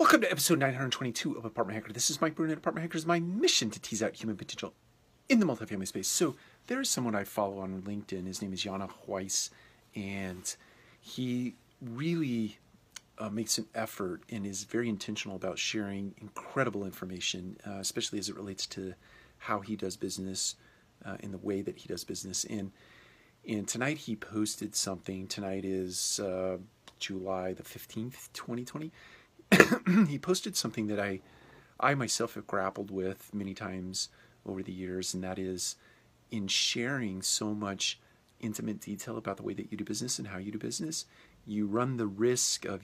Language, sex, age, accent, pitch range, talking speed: English, male, 40-59, American, 95-120 Hz, 175 wpm